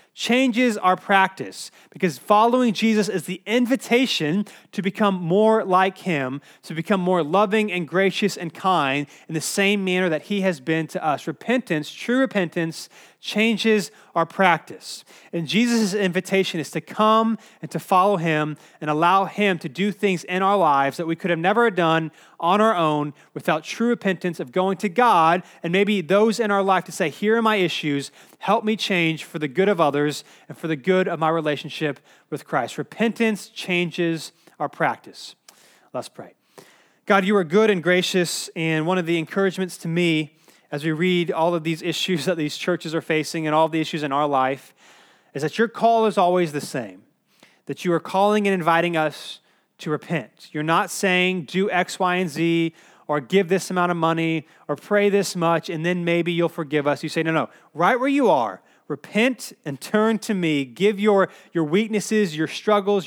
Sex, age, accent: male, 30-49, American